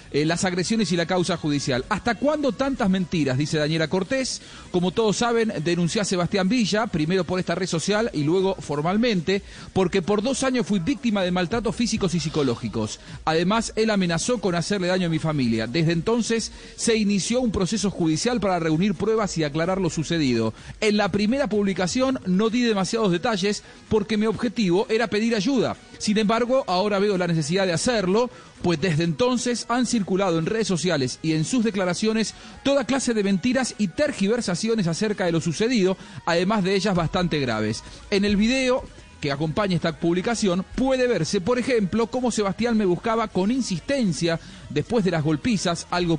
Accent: Argentinian